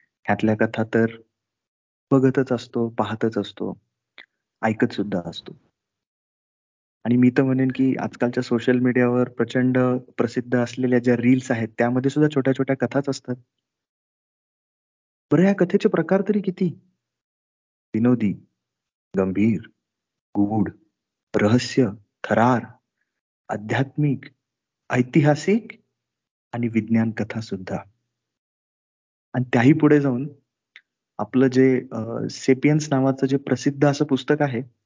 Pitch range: 115-145 Hz